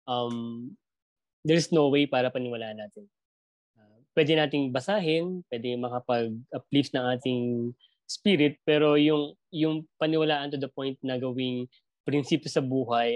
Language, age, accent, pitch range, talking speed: Filipino, 20-39, native, 120-150 Hz, 130 wpm